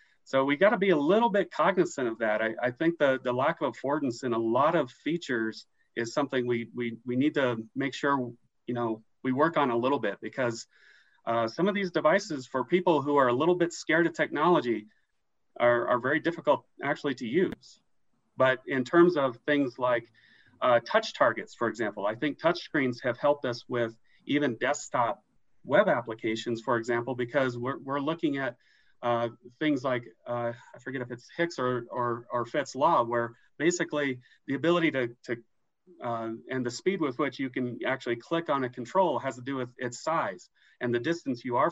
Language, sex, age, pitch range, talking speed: English, male, 40-59, 120-160 Hz, 195 wpm